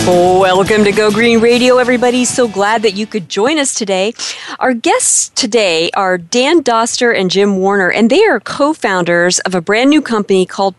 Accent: American